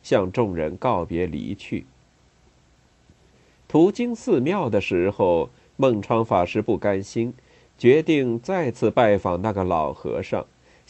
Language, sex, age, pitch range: Chinese, male, 50-69, 95-155 Hz